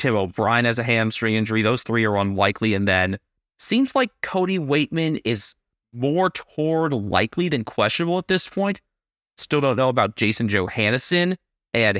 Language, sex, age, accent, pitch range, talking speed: English, male, 20-39, American, 100-130 Hz, 160 wpm